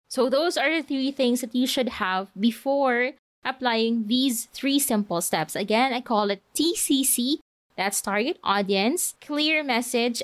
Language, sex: English, female